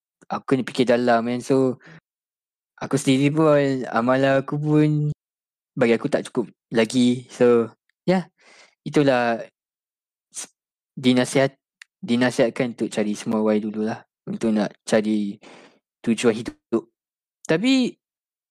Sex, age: male, 20-39